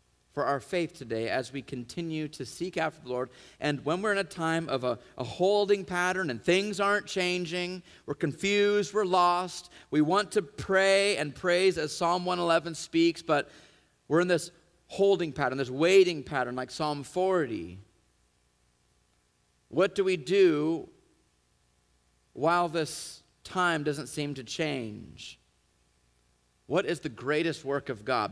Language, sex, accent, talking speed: English, male, American, 150 wpm